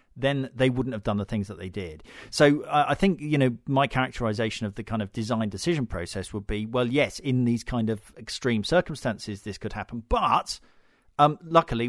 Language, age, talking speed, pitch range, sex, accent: English, 40-59, 205 wpm, 105-130 Hz, male, British